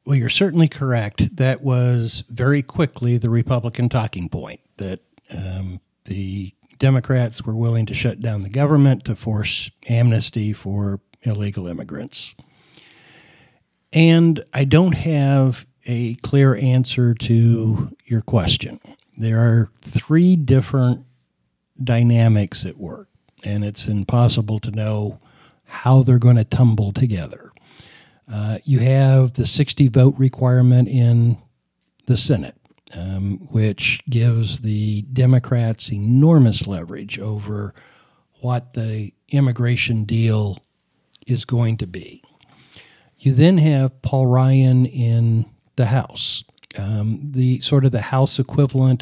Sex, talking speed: male, 120 wpm